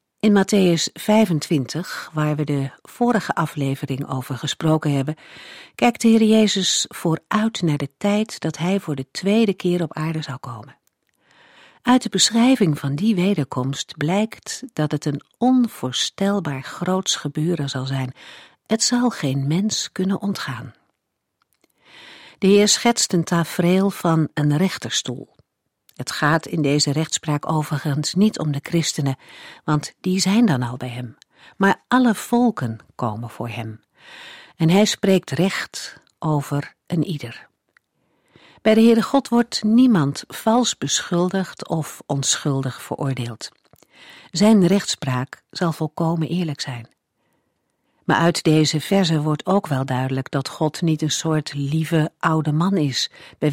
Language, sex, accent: Dutch, female, Dutch